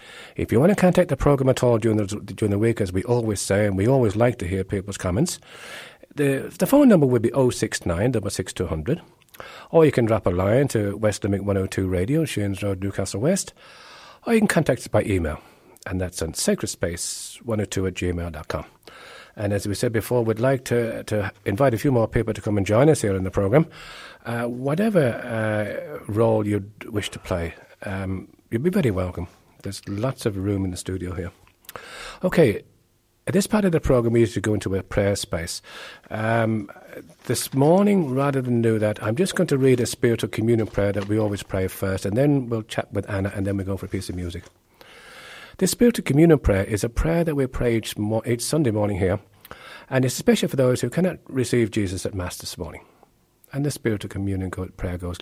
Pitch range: 100-130 Hz